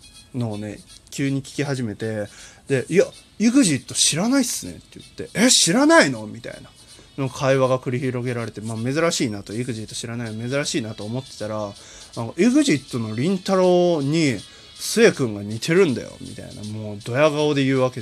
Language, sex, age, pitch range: Japanese, male, 20-39, 115-195 Hz